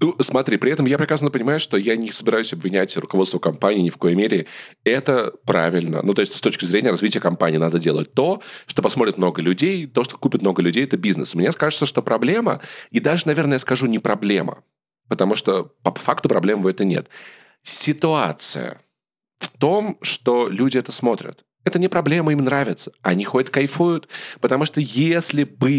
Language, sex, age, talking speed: Russian, male, 20-39, 185 wpm